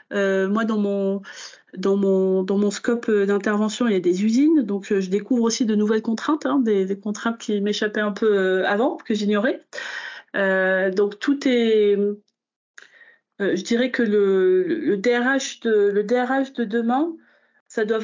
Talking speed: 170 wpm